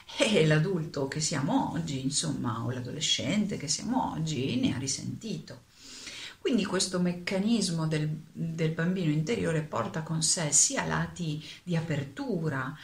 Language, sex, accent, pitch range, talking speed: Italian, female, native, 135-165 Hz, 130 wpm